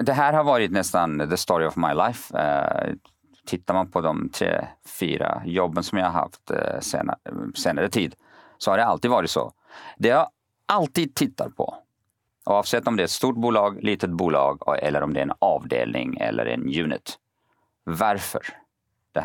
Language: Swedish